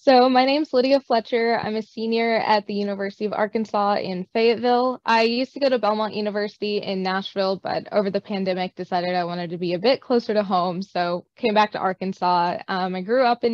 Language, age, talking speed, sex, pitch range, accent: English, 20-39, 215 wpm, female, 190-235 Hz, American